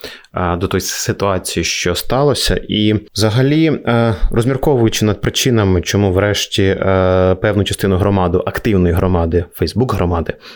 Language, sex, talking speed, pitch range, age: Ukrainian, male, 110 wpm, 95-115 Hz, 20-39